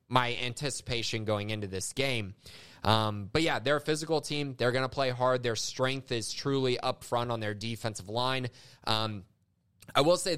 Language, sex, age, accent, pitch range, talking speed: English, male, 20-39, American, 110-130 Hz, 185 wpm